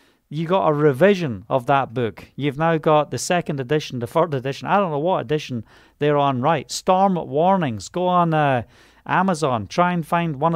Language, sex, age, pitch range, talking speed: English, male, 40-59, 145-185 Hz, 195 wpm